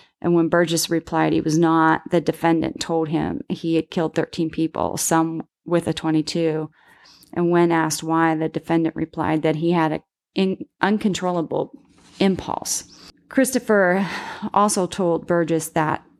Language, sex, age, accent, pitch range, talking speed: English, female, 30-49, American, 160-170 Hz, 145 wpm